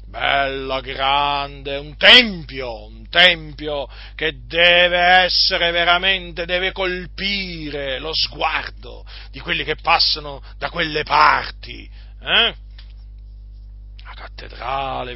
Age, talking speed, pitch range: 40-59, 85 wpm, 115-190 Hz